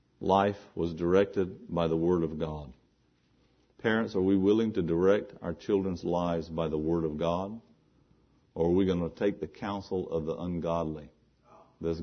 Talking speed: 170 wpm